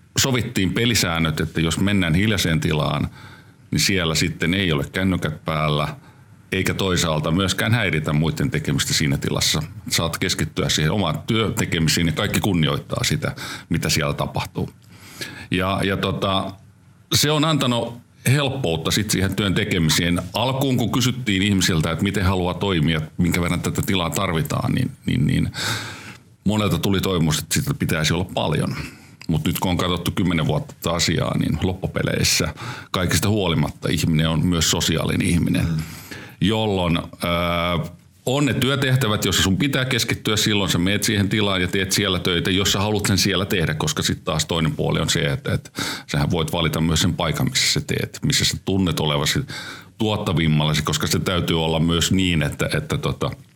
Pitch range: 85-105 Hz